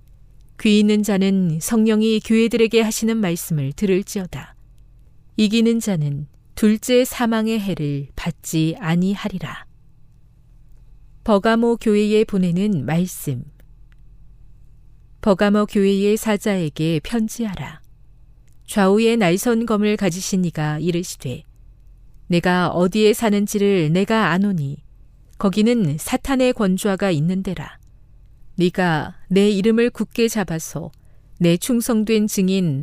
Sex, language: female, Korean